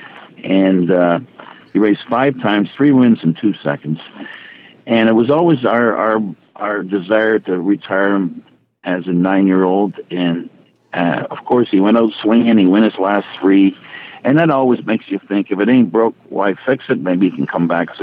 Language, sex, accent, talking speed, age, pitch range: English, male, American, 190 wpm, 60-79, 95-115 Hz